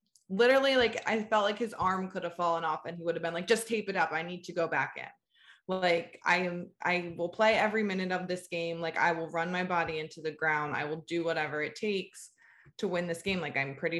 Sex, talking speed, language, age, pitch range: female, 255 wpm, English, 20-39, 165-210 Hz